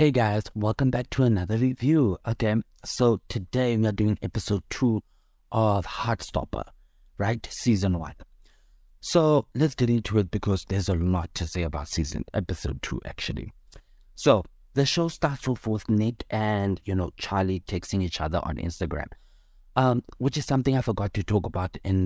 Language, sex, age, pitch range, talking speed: English, male, 30-49, 90-110 Hz, 165 wpm